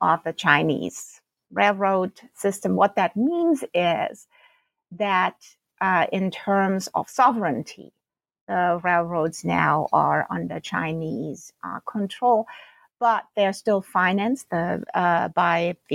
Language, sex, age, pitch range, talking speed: English, female, 50-69, 175-230 Hz, 105 wpm